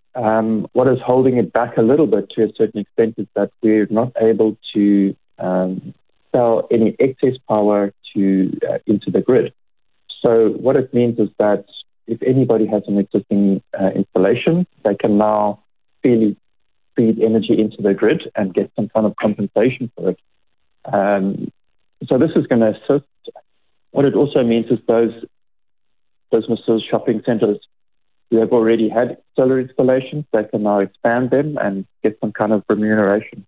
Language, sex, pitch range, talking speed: English, male, 100-120 Hz, 165 wpm